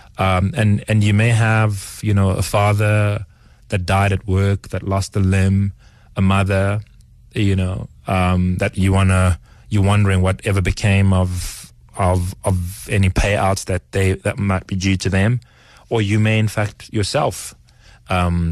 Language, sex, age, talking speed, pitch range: English, male, 30-49, 160 wpm, 85-100 Hz